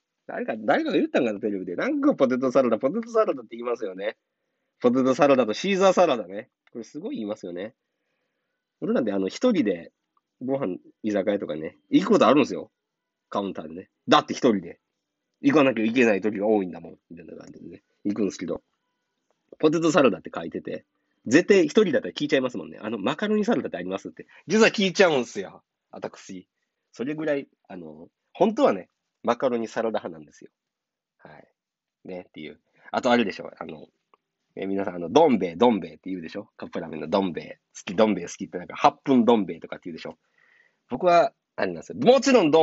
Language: Japanese